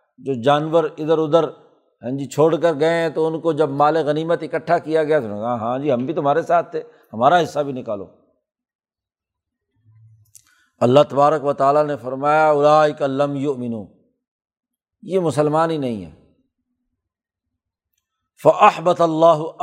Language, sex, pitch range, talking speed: Urdu, male, 145-190 Hz, 140 wpm